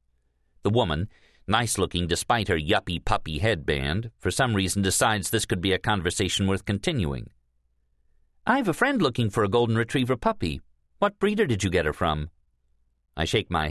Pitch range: 70-115 Hz